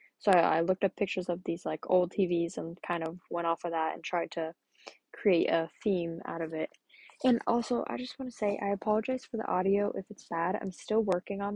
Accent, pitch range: American, 175-215 Hz